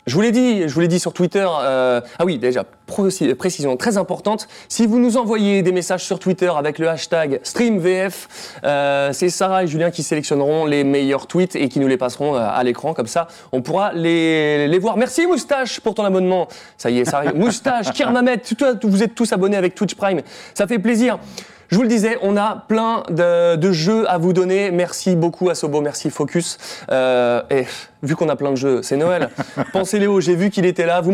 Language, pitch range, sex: French, 155-210 Hz, male